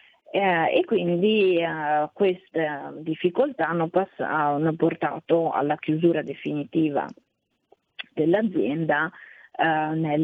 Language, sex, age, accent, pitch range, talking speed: Italian, female, 30-49, native, 160-205 Hz, 80 wpm